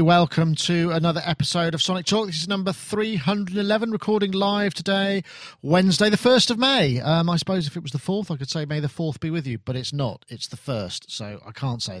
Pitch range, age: 140-195 Hz, 40-59